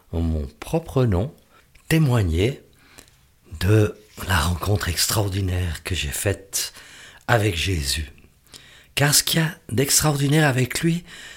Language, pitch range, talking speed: French, 95-130 Hz, 110 wpm